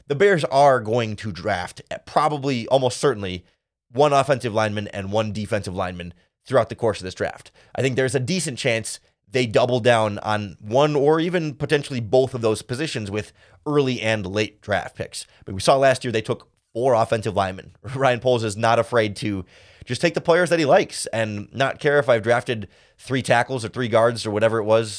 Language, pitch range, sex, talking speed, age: English, 105-140 Hz, male, 205 wpm, 30-49